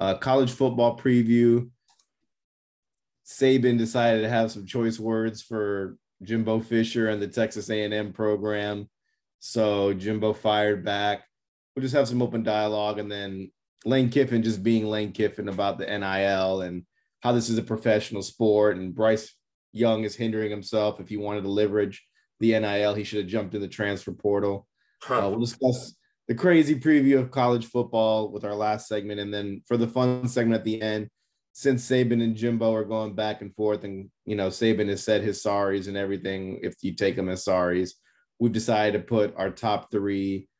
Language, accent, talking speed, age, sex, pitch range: English, American, 180 wpm, 20-39, male, 100-115 Hz